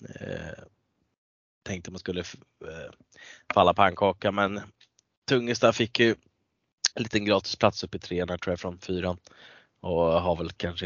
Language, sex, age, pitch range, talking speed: Swedish, male, 20-39, 85-95 Hz, 150 wpm